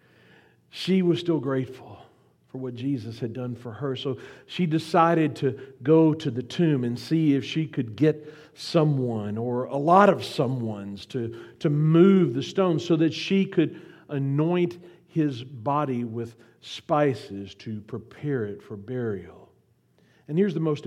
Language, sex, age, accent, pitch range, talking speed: English, male, 50-69, American, 130-180 Hz, 155 wpm